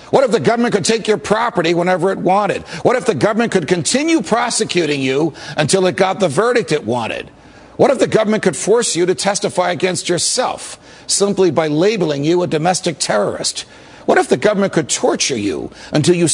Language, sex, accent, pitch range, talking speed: English, male, American, 165-210 Hz, 195 wpm